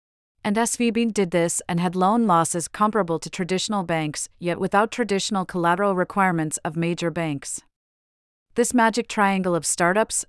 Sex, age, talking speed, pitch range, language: female, 40-59, 145 wpm, 165-200 Hz, English